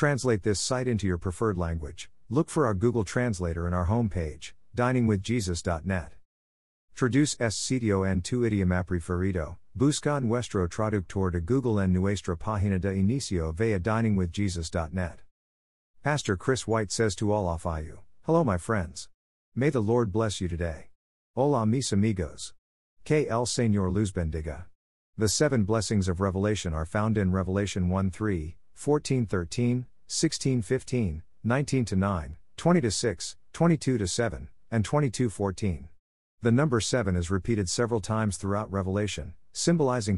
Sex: male